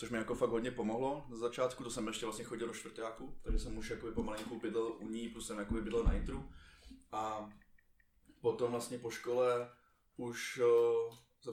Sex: male